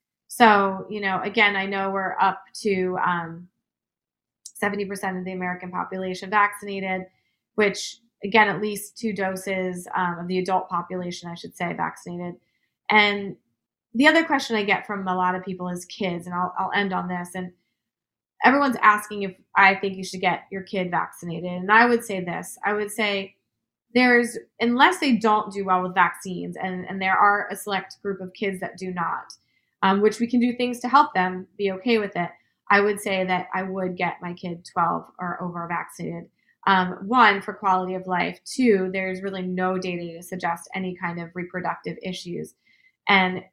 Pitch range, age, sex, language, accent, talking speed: 180-205 Hz, 20-39, female, English, American, 185 wpm